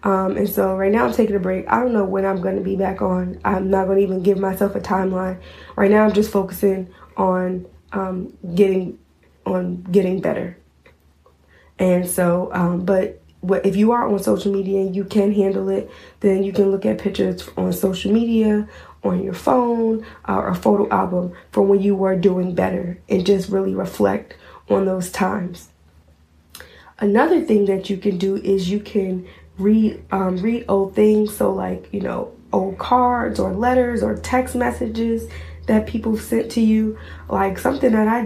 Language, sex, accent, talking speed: English, female, American, 185 wpm